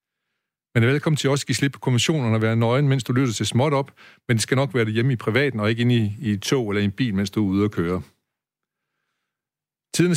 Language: Danish